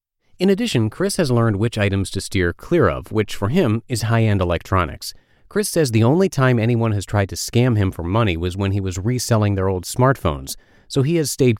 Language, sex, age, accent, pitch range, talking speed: English, male, 30-49, American, 90-125 Hz, 215 wpm